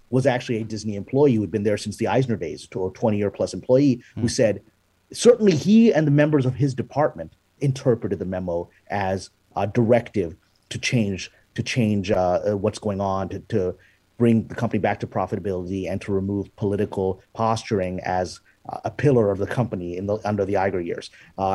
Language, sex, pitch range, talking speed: English, male, 100-130 Hz, 185 wpm